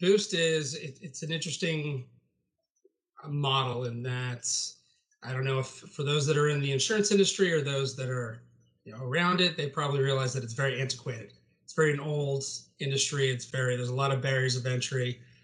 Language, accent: English, American